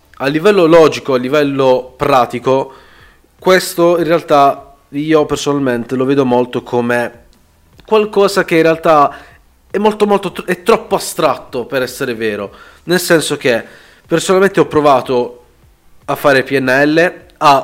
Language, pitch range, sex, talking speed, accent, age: Italian, 125-155 Hz, male, 130 wpm, native, 30-49